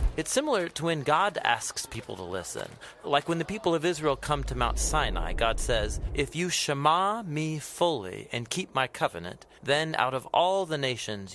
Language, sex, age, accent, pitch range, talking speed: English, male, 40-59, American, 115-165 Hz, 190 wpm